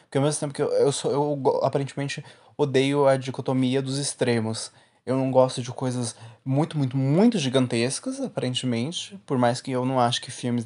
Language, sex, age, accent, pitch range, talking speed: Portuguese, male, 20-39, Brazilian, 120-150 Hz, 185 wpm